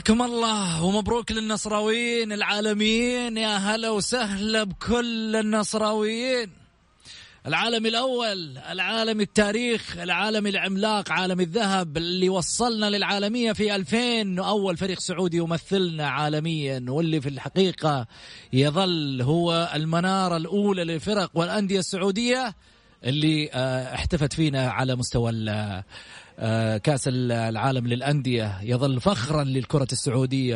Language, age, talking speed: English, 30-49, 100 wpm